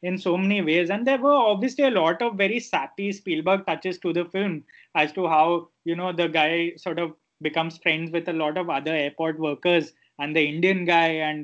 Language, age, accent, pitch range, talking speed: English, 20-39, Indian, 165-210 Hz, 215 wpm